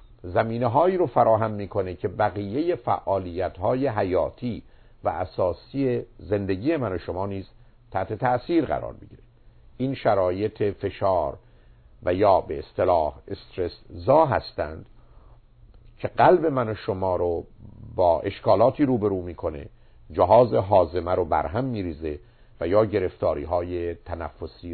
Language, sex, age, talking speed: Persian, male, 50-69, 130 wpm